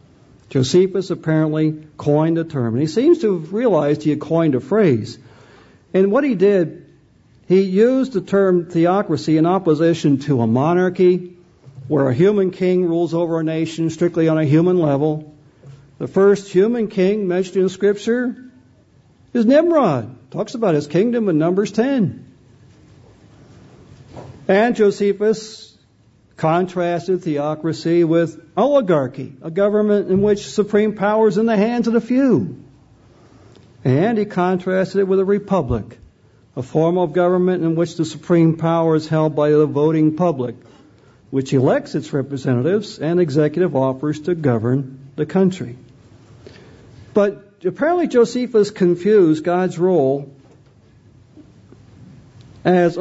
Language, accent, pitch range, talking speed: English, American, 135-195 Hz, 135 wpm